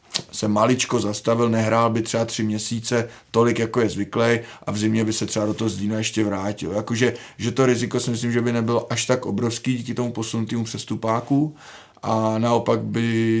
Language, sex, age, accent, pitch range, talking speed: Czech, male, 20-39, native, 110-120 Hz, 190 wpm